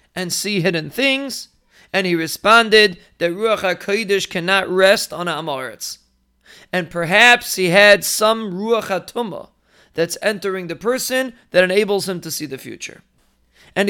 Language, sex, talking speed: English, male, 145 wpm